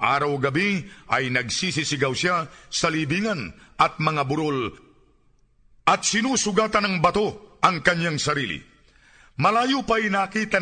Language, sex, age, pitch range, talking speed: Filipino, male, 50-69, 165-220 Hz, 105 wpm